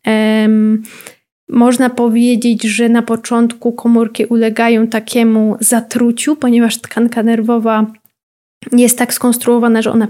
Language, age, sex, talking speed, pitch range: Polish, 20-39, female, 100 wpm, 225-245 Hz